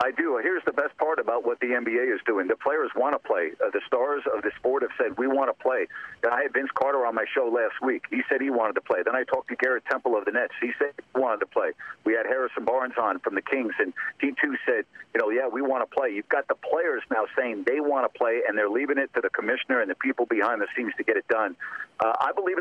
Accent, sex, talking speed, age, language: American, male, 285 wpm, 50-69, English